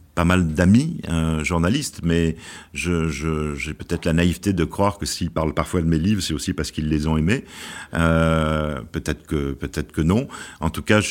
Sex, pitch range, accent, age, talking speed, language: male, 80-100 Hz, French, 50-69, 205 wpm, French